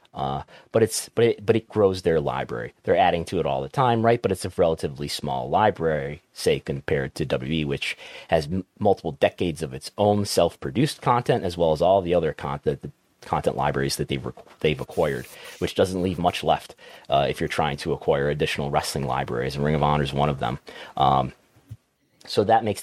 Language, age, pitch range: English, 30-49, 75-100 Hz